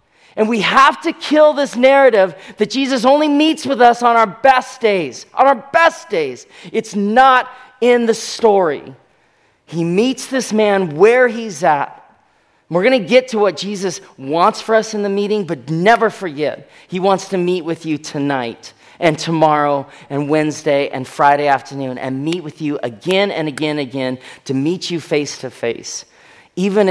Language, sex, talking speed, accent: English, male, 175 wpm, American